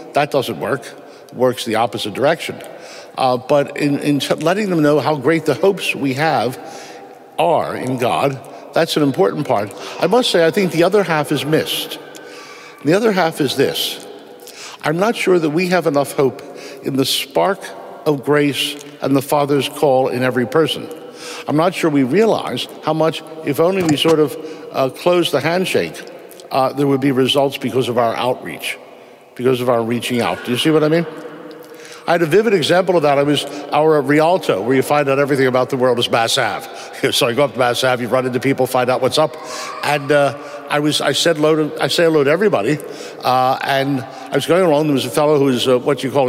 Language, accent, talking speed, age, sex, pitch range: English, American, 215 wpm, 60-79, male, 130-160 Hz